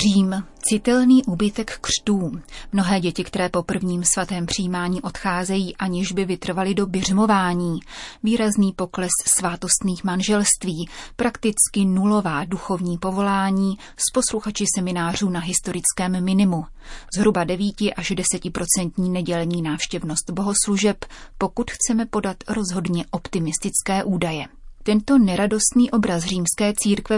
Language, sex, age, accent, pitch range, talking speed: Czech, female, 30-49, native, 175-205 Hz, 110 wpm